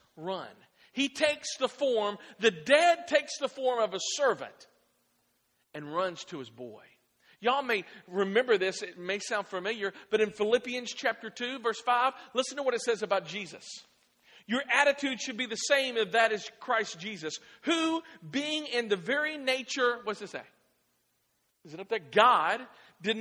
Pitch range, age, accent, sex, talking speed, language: 200-255 Hz, 50-69, American, male, 170 wpm, English